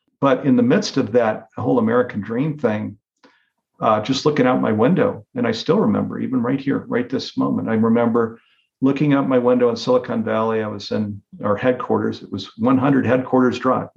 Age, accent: 50-69, American